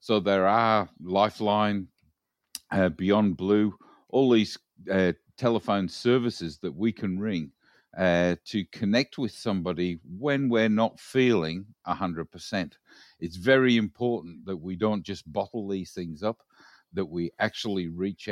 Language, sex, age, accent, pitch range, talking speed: English, male, 50-69, Australian, 90-115 Hz, 140 wpm